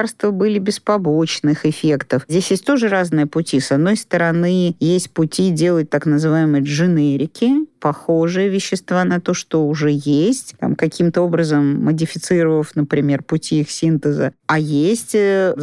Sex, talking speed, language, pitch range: female, 135 wpm, Russian, 150-185 Hz